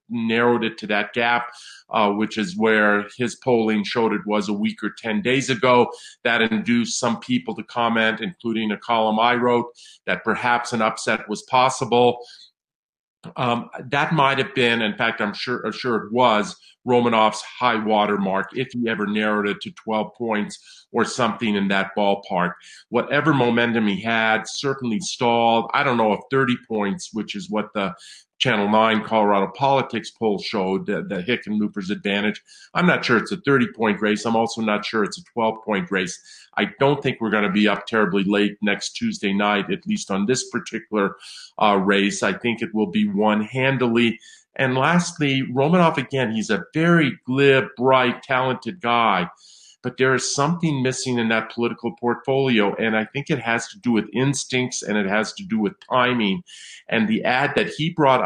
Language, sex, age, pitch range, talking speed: English, male, 50-69, 105-130 Hz, 180 wpm